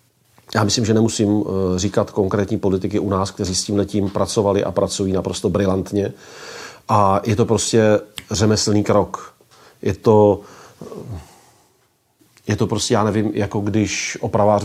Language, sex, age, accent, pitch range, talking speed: Czech, male, 40-59, native, 100-120 Hz, 140 wpm